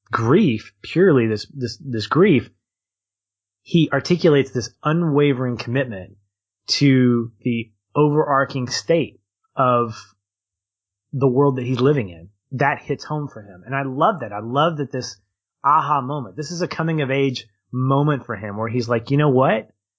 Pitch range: 110-145 Hz